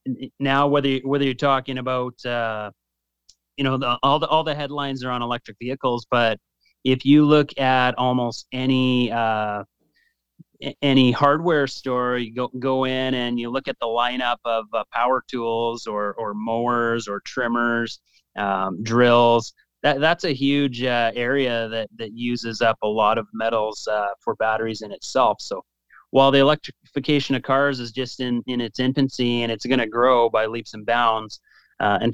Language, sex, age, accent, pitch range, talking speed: English, male, 30-49, American, 115-135 Hz, 175 wpm